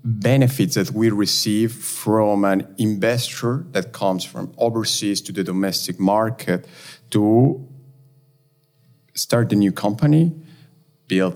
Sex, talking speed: male, 110 wpm